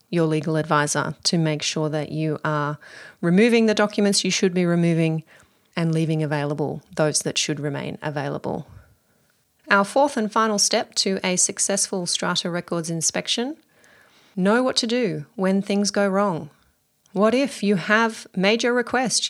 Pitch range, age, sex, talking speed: 170-210 Hz, 30-49, female, 155 wpm